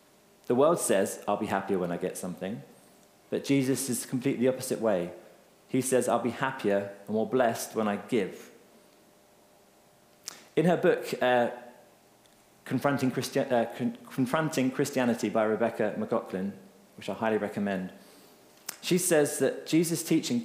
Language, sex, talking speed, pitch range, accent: English, male, 140 wpm, 115-150 Hz, British